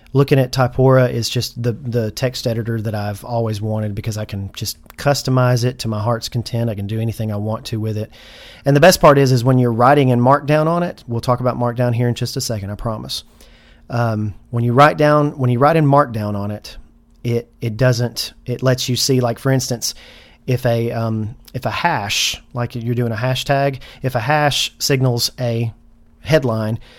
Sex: male